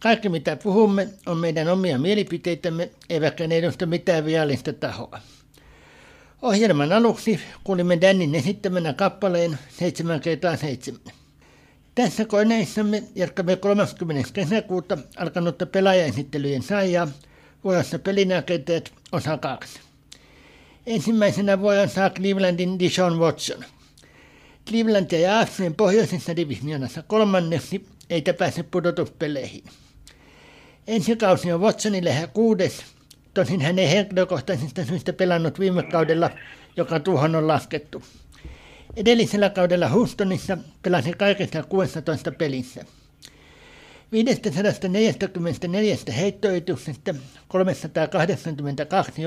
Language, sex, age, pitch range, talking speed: Finnish, male, 60-79, 160-195 Hz, 90 wpm